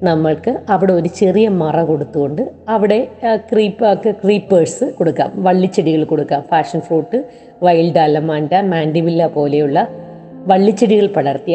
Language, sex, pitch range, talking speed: Malayalam, female, 155-195 Hz, 105 wpm